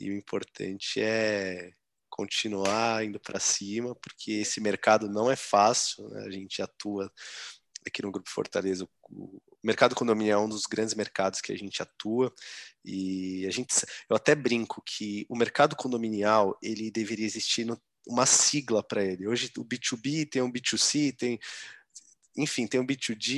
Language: Portuguese